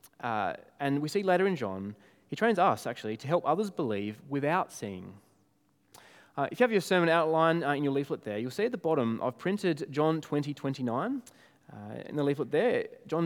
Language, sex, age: English, male, 20-39